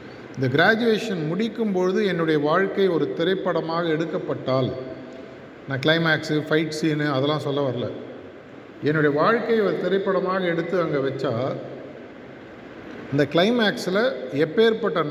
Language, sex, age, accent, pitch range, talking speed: Tamil, male, 50-69, native, 150-185 Hz, 100 wpm